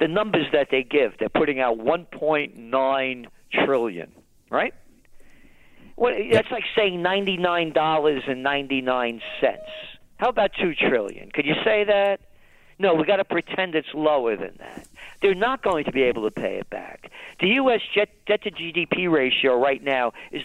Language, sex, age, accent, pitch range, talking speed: English, male, 50-69, American, 130-190 Hz, 145 wpm